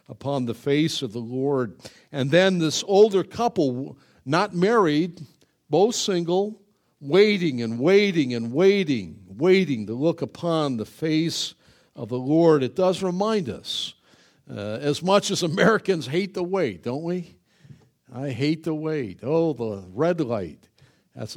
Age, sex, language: 60-79, male, English